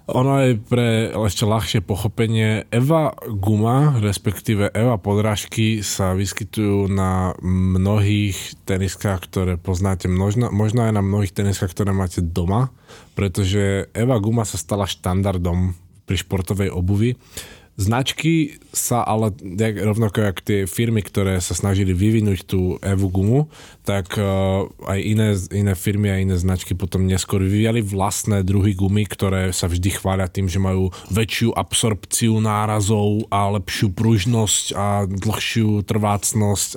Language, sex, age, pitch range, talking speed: Slovak, male, 20-39, 95-110 Hz, 130 wpm